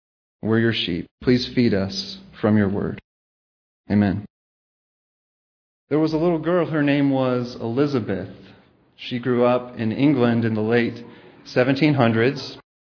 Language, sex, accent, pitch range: English, male, American, 125-170 Hz